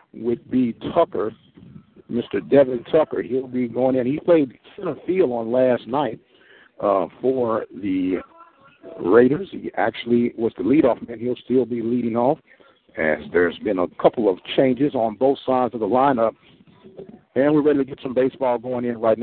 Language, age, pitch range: English, 60-79, 125-185 Hz